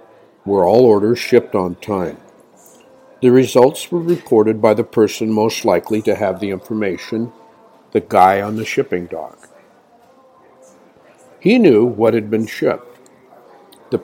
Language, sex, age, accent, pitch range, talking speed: English, male, 50-69, American, 105-140 Hz, 135 wpm